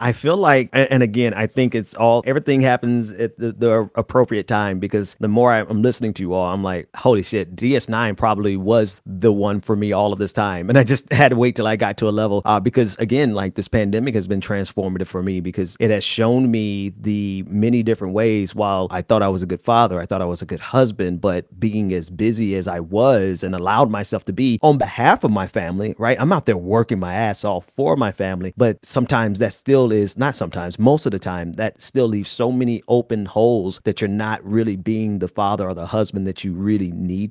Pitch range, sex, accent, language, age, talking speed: 100-120 Hz, male, American, English, 30-49, 235 wpm